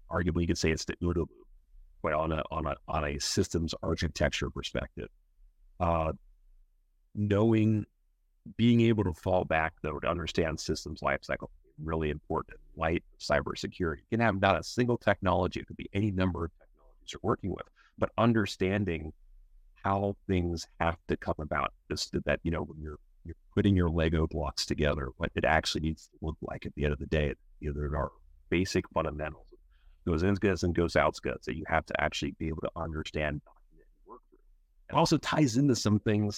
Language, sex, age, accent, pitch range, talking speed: English, male, 30-49, American, 75-95 Hz, 180 wpm